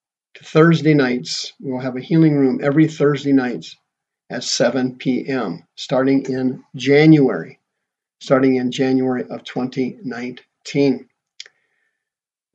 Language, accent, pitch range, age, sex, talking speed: English, American, 130-155 Hz, 50-69, male, 105 wpm